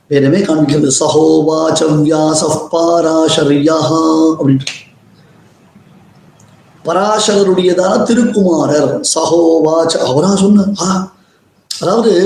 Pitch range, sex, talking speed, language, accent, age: 155-210 Hz, male, 50 wpm, Tamil, native, 20-39